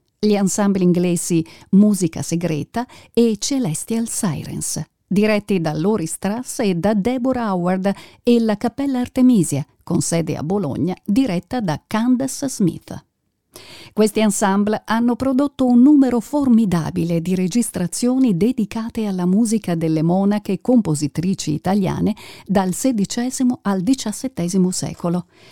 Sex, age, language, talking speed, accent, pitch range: female, 50-69, Italian, 115 wpm, native, 175-240 Hz